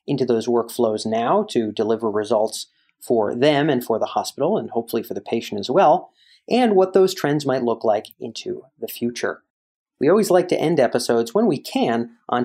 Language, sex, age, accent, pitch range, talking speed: English, male, 30-49, American, 115-145 Hz, 195 wpm